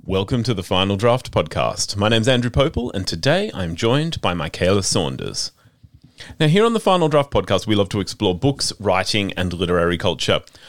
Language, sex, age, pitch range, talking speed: English, male, 30-49, 90-135 Hz, 185 wpm